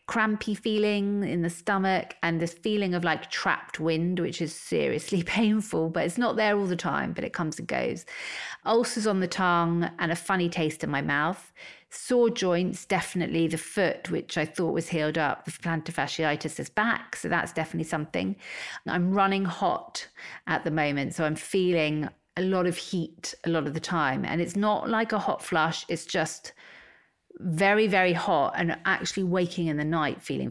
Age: 40-59